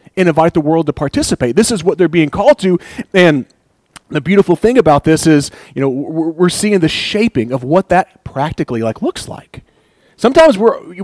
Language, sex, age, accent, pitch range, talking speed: English, male, 30-49, American, 130-180 Hz, 190 wpm